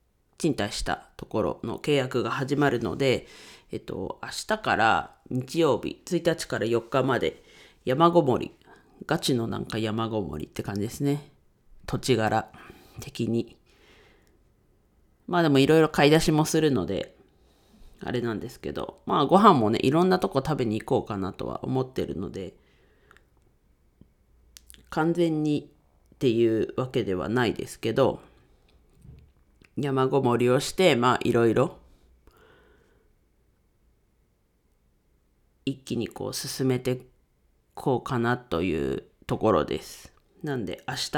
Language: Japanese